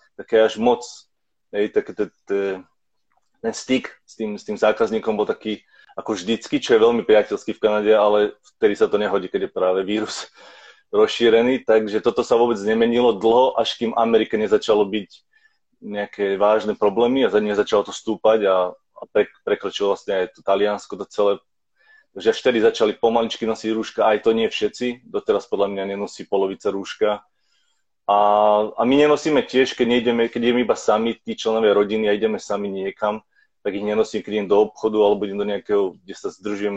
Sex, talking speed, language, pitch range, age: male, 180 wpm, Slovak, 105-120 Hz, 30-49